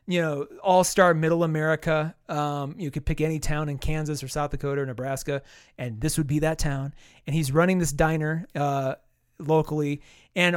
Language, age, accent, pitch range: English, 30-49, American, 155-205 Hz